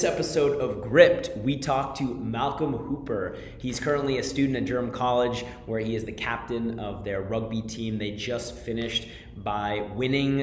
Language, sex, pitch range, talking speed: English, male, 110-125 Hz, 165 wpm